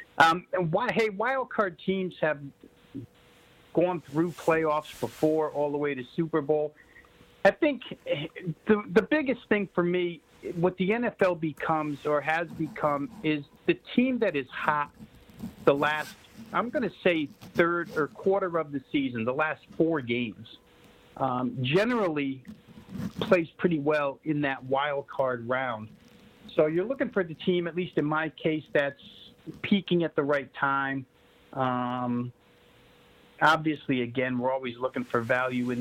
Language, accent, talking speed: English, American, 150 wpm